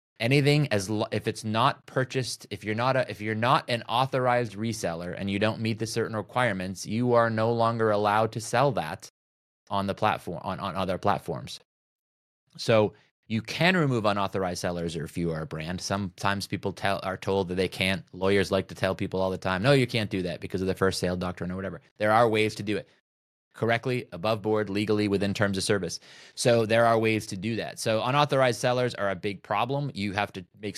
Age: 20-39